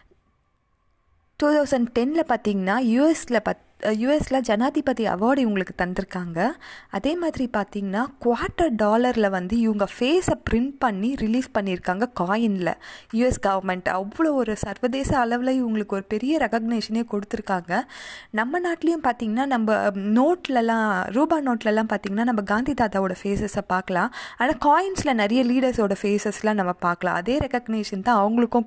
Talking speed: 120 wpm